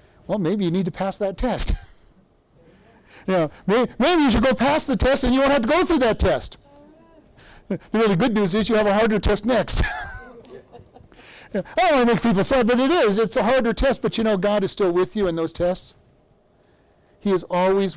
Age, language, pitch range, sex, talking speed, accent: 50-69, English, 170-225 Hz, male, 215 wpm, American